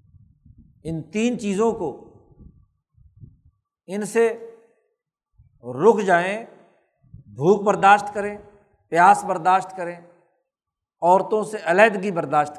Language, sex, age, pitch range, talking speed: Urdu, male, 60-79, 170-220 Hz, 85 wpm